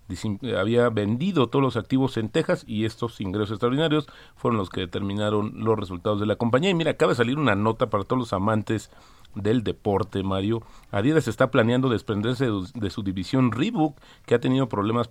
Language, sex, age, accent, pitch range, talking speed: Spanish, male, 40-59, Mexican, 100-130 Hz, 185 wpm